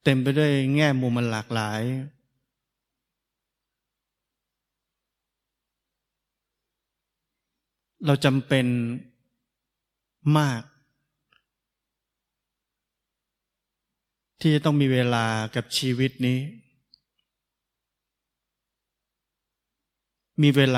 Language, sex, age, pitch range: Thai, male, 20-39, 120-140 Hz